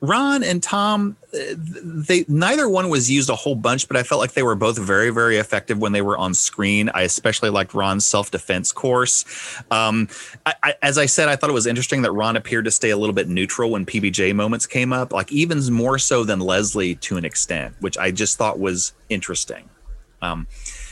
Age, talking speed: 30-49, 210 wpm